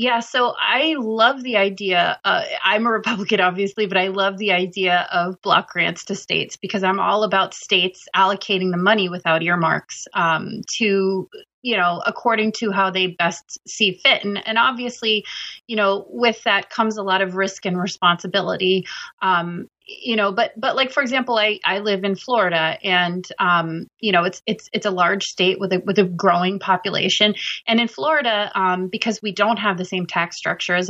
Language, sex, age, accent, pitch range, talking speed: English, female, 30-49, American, 185-225 Hz, 190 wpm